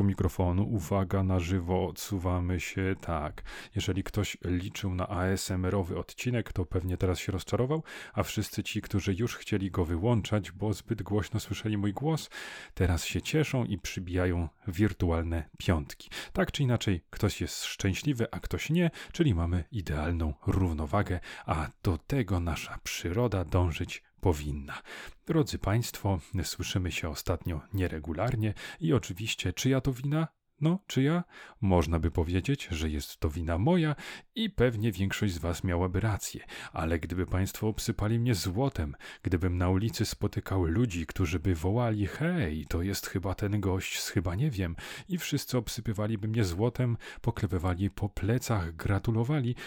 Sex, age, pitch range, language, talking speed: male, 30-49, 90-115 Hz, Polish, 145 wpm